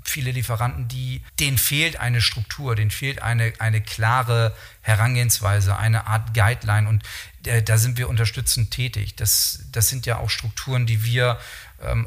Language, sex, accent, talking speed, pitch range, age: German, male, German, 160 wpm, 110-125 Hz, 40-59